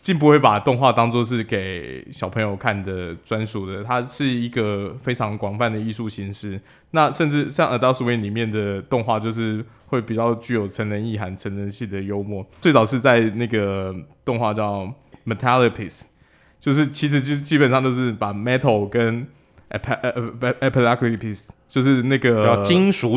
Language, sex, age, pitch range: Chinese, male, 20-39, 105-130 Hz